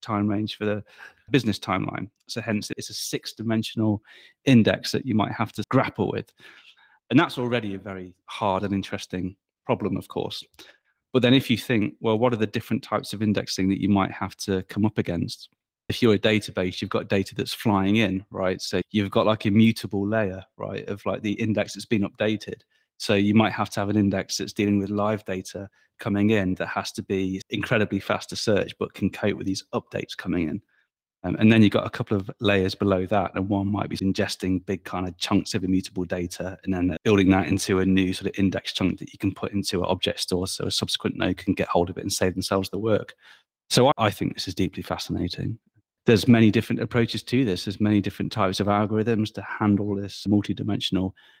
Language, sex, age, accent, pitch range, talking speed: English, male, 30-49, British, 95-110 Hz, 220 wpm